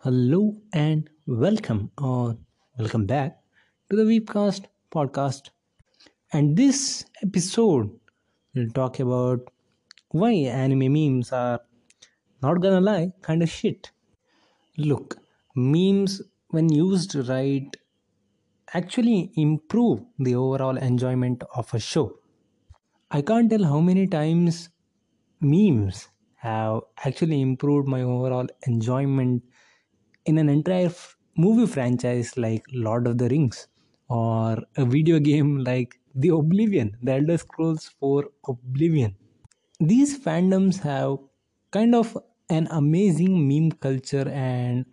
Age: 20-39